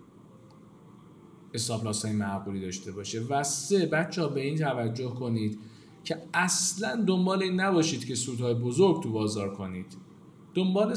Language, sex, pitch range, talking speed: Persian, male, 110-160 Hz, 130 wpm